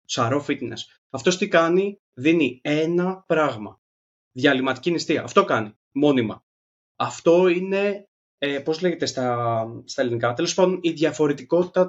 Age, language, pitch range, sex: 20-39, Greek, 125-175 Hz, male